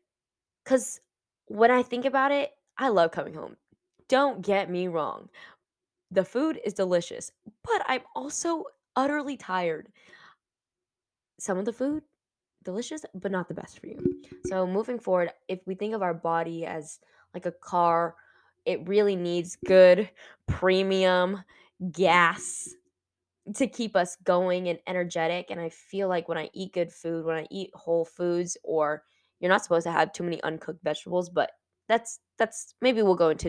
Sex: female